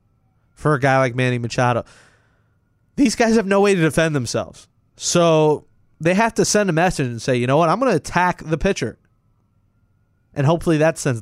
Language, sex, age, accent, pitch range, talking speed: English, male, 30-49, American, 115-175 Hz, 195 wpm